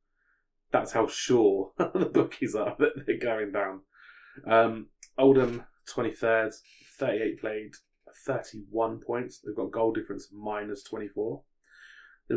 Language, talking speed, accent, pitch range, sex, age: English, 115 wpm, British, 105-120 Hz, male, 20-39